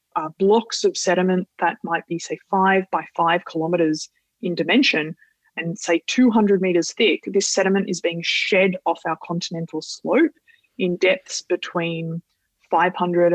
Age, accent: 20-39, Australian